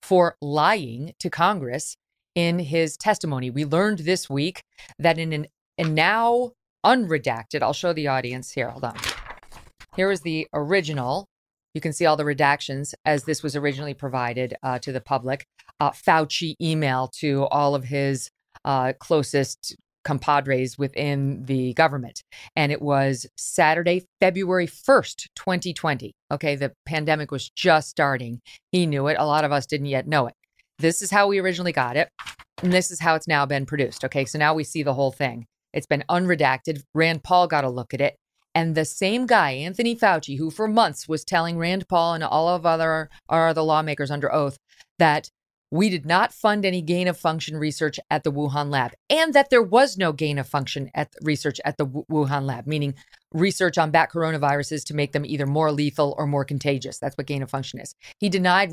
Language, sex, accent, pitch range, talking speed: English, female, American, 140-175 Hz, 190 wpm